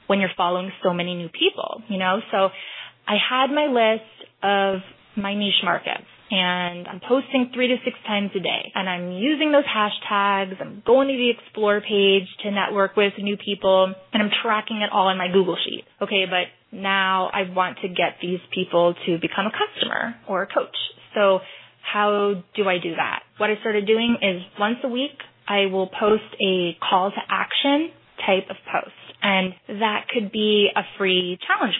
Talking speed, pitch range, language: 185 wpm, 190-235 Hz, English